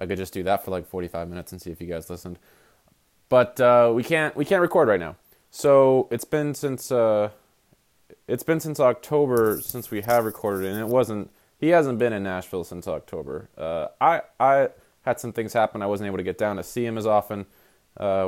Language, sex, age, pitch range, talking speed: English, male, 20-39, 95-120 Hz, 215 wpm